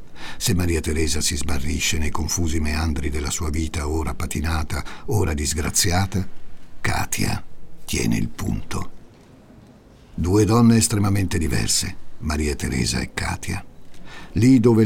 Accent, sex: native, male